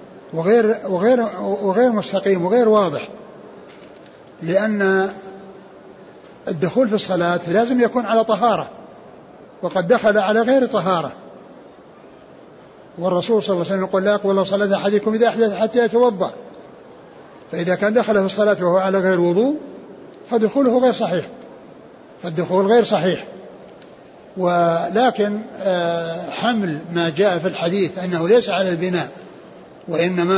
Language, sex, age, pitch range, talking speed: Arabic, male, 60-79, 175-210 Hz, 115 wpm